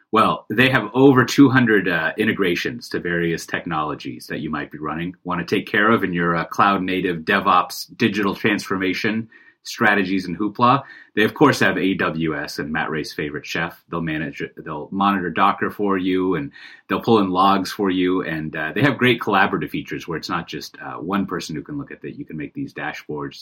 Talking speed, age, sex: 200 wpm, 30-49, male